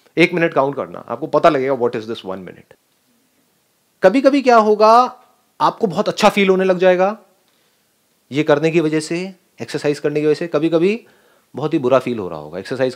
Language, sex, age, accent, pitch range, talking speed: Hindi, male, 30-49, native, 140-215 Hz, 195 wpm